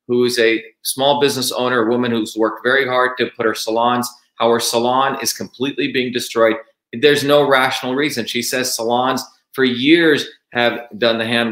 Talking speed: 190 wpm